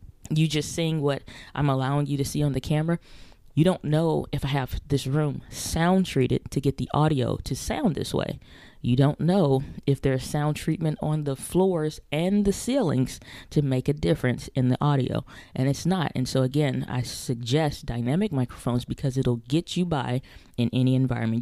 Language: English